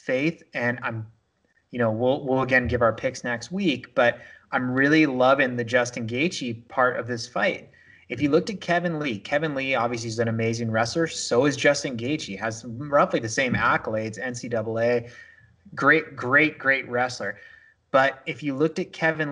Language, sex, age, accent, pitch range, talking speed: English, male, 30-49, American, 125-160 Hz, 175 wpm